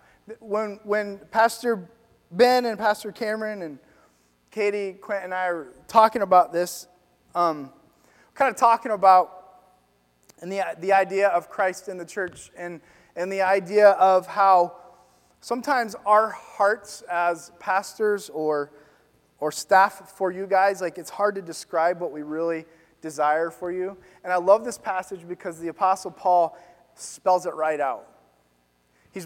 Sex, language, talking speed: male, English, 150 wpm